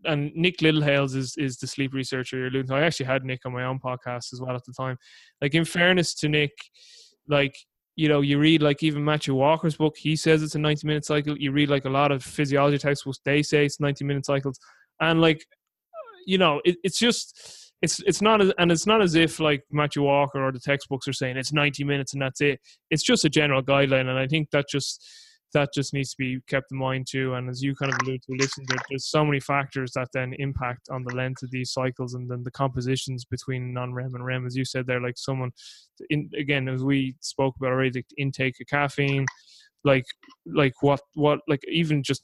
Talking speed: 225 wpm